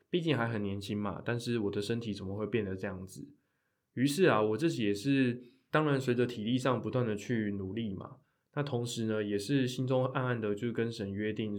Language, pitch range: Chinese, 100-125 Hz